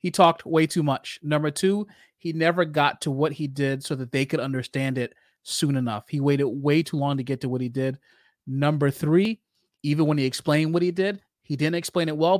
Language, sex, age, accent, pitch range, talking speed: English, male, 30-49, American, 140-165 Hz, 225 wpm